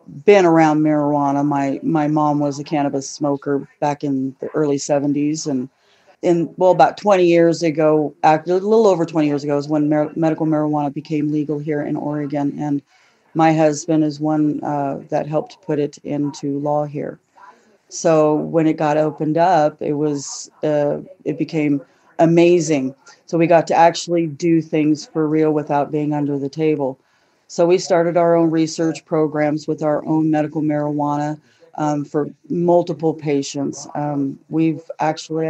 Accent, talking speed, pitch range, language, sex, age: American, 160 wpm, 145-165 Hz, English, female, 40-59